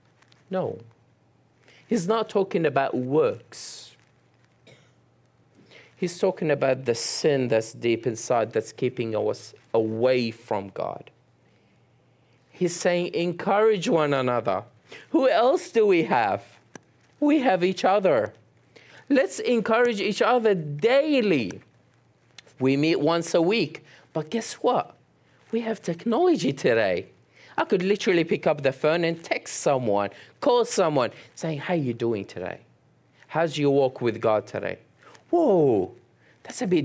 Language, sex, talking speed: English, male, 130 wpm